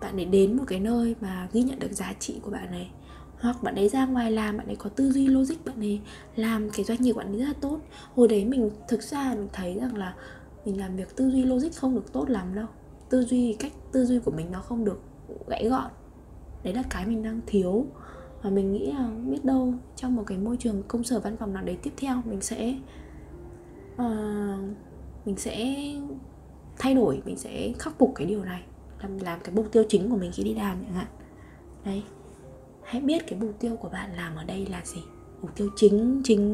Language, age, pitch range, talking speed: Vietnamese, 10-29, 195-240 Hz, 225 wpm